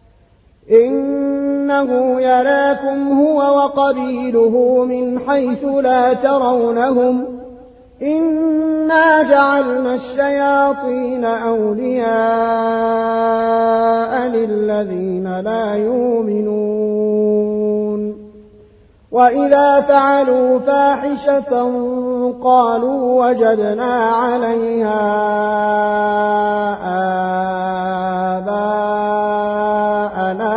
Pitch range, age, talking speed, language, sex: 215-265 Hz, 30-49, 45 wpm, Arabic, male